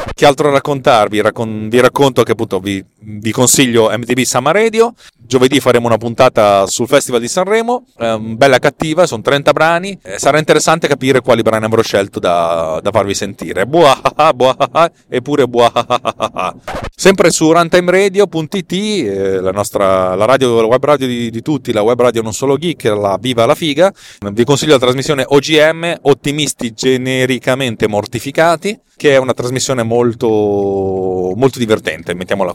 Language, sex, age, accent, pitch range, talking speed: Italian, male, 30-49, native, 110-140 Hz, 165 wpm